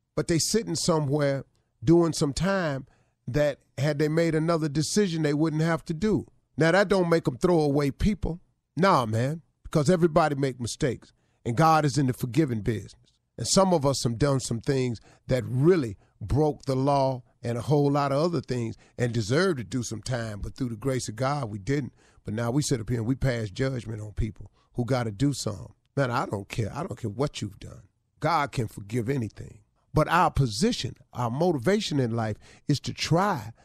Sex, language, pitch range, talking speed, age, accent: male, English, 125-180 Hz, 205 wpm, 40-59, American